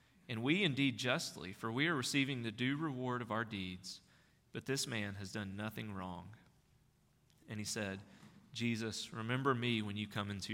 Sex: male